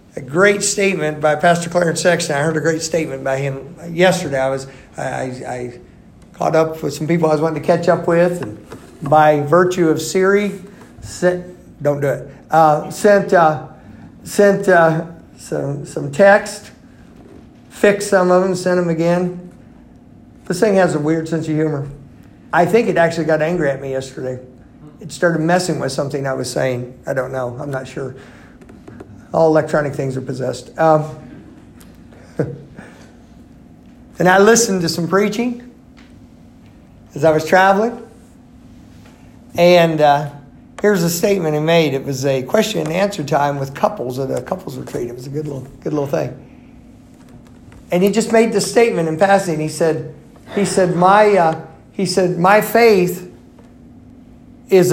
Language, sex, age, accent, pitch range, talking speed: English, male, 50-69, American, 145-185 Hz, 165 wpm